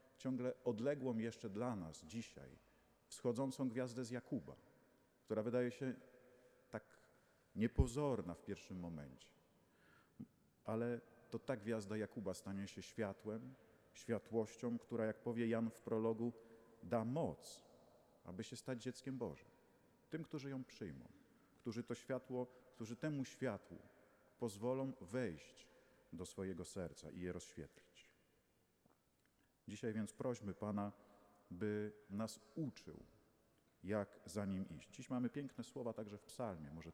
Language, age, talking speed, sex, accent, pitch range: Polish, 40-59, 125 wpm, male, native, 105-130 Hz